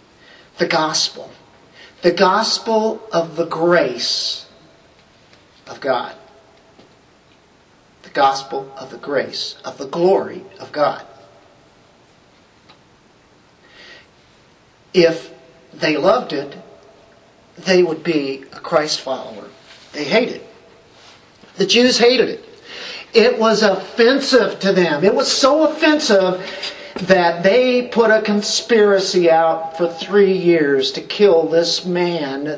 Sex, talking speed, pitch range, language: male, 105 wpm, 150-200 Hz, English